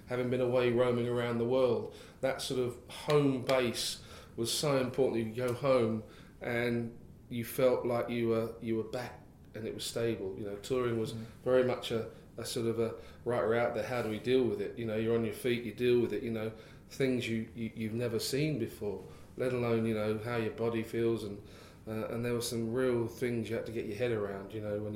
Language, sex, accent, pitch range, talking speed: English, male, British, 105-120 Hz, 235 wpm